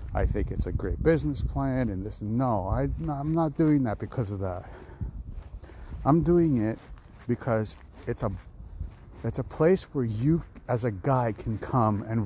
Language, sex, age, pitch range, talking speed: English, male, 50-69, 90-130 Hz, 165 wpm